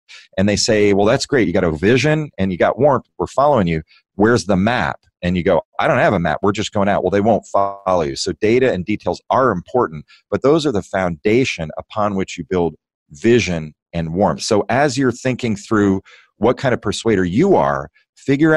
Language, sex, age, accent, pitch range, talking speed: English, male, 40-59, American, 90-125 Hz, 215 wpm